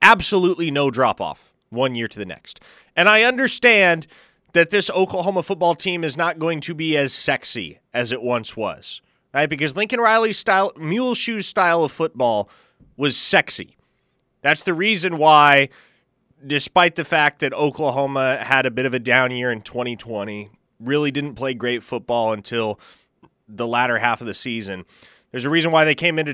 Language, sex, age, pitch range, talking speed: English, male, 30-49, 125-180 Hz, 175 wpm